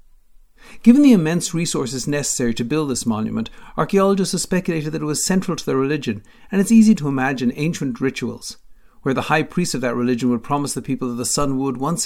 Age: 50-69